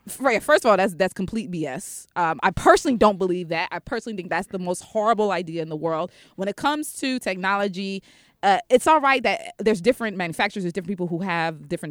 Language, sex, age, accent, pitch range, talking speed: English, female, 20-39, American, 175-220 Hz, 215 wpm